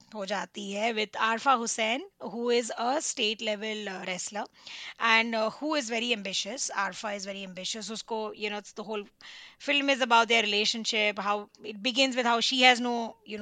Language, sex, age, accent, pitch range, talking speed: Hindi, female, 20-39, native, 205-250 Hz, 180 wpm